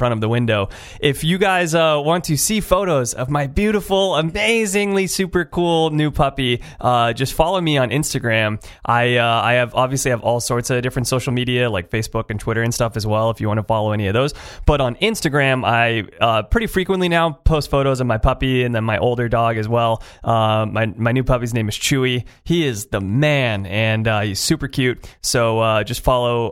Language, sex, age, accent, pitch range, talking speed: English, male, 30-49, American, 115-150 Hz, 215 wpm